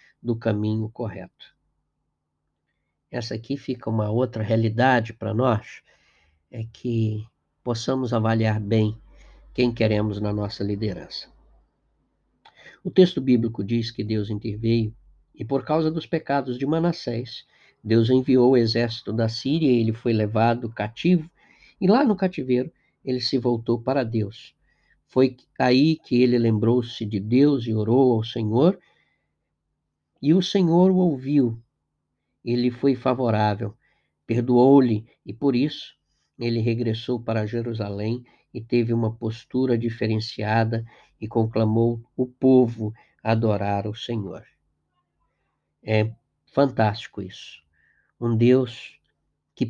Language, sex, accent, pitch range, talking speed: Portuguese, male, Brazilian, 110-130 Hz, 120 wpm